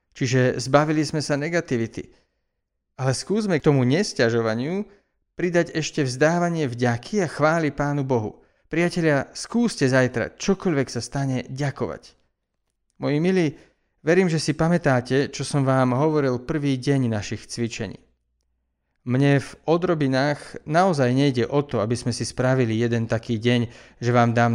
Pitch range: 125-155 Hz